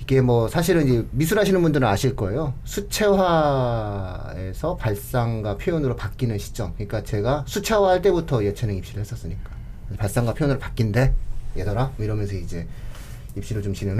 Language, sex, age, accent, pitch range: Korean, male, 40-59, native, 105-165 Hz